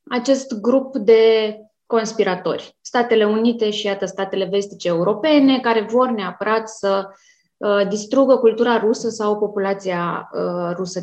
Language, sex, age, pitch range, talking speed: Romanian, female, 20-39, 200-250 Hz, 110 wpm